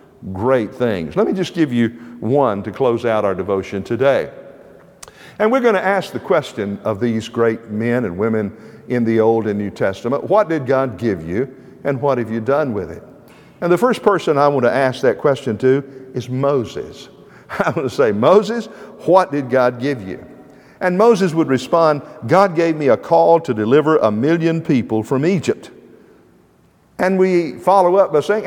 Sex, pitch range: male, 115-175 Hz